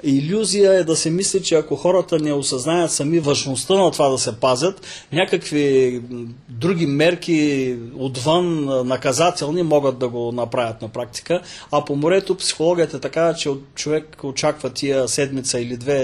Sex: male